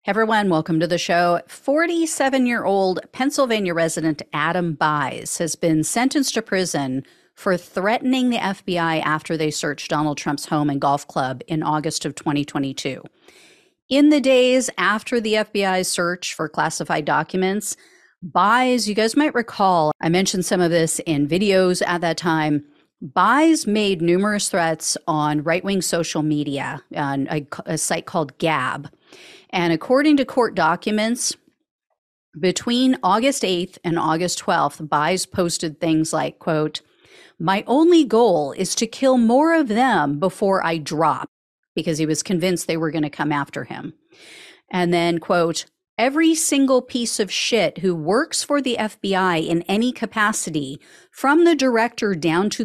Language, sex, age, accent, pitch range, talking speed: English, female, 40-59, American, 160-240 Hz, 145 wpm